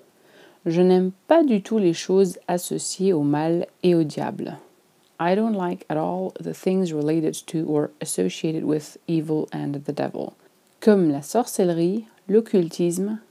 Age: 30-49